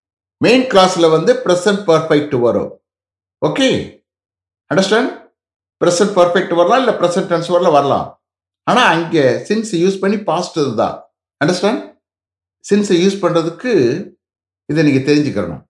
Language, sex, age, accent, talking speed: English, male, 60-79, Indian, 120 wpm